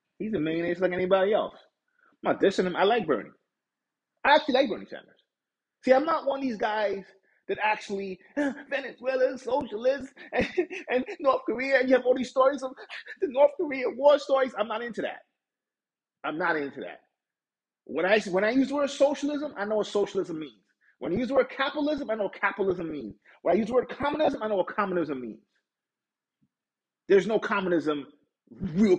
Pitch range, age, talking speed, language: 180-270 Hz, 30-49, 195 wpm, English